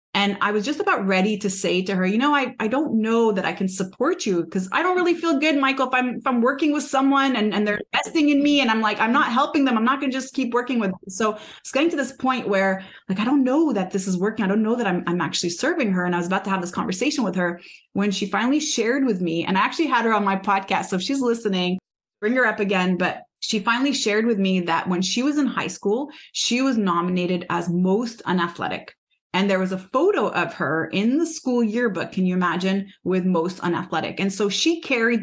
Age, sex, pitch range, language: 20-39, female, 190-260 Hz, English